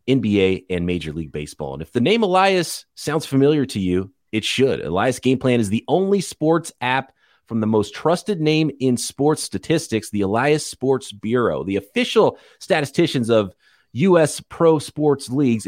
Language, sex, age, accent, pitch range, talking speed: English, male, 30-49, American, 105-150 Hz, 170 wpm